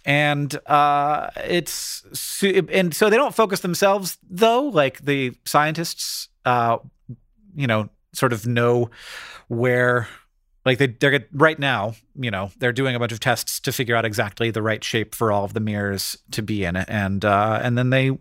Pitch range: 115-155 Hz